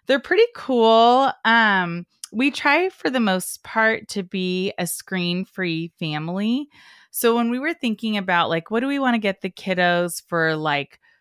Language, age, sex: English, 20-39, female